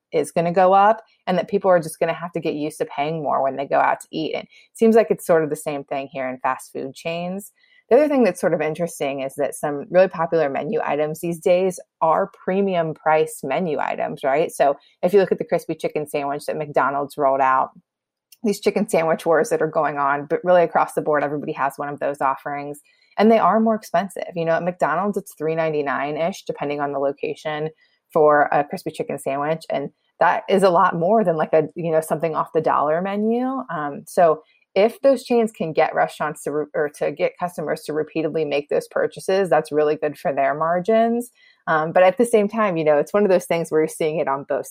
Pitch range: 150-195 Hz